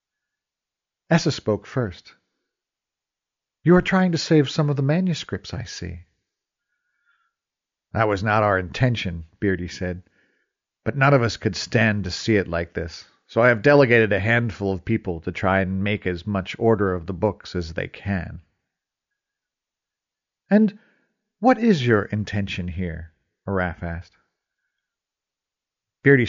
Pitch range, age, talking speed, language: 95-145 Hz, 50-69, 140 wpm, English